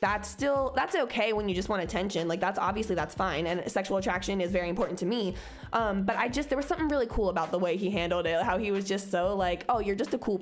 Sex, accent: female, American